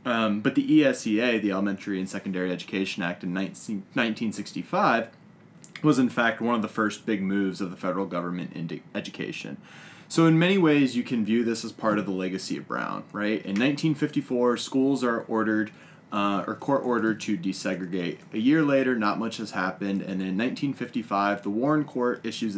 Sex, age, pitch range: male, 20-39, 100-125 Hz